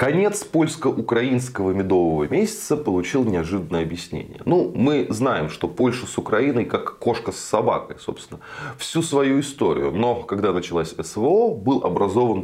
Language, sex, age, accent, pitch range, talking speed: Russian, male, 20-39, native, 90-135 Hz, 135 wpm